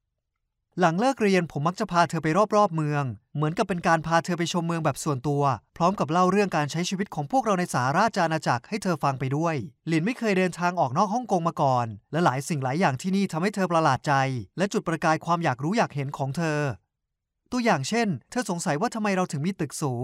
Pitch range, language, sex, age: 145-190 Hz, Thai, male, 20-39